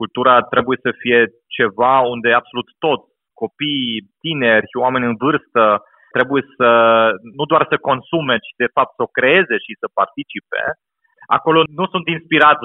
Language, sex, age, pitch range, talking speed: Romanian, male, 30-49, 120-160 Hz, 155 wpm